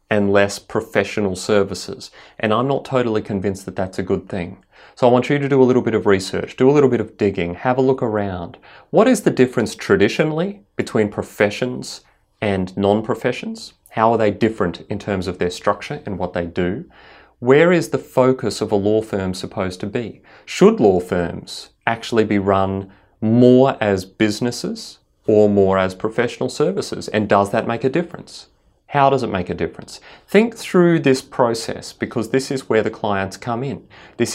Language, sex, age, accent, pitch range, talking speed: English, male, 30-49, Australian, 95-125 Hz, 185 wpm